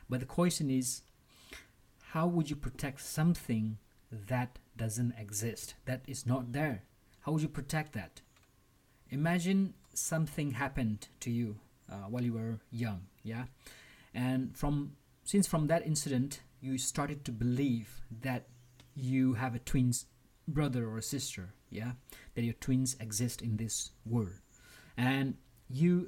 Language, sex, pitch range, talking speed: English, male, 120-145 Hz, 140 wpm